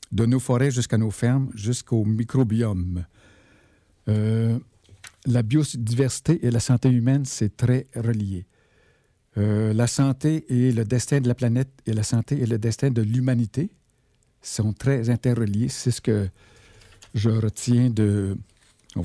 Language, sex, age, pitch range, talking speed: French, male, 60-79, 105-125 Hz, 140 wpm